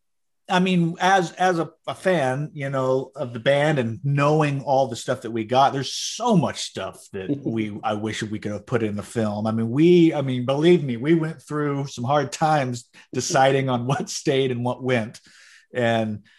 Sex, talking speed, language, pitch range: male, 205 wpm, English, 115-150 Hz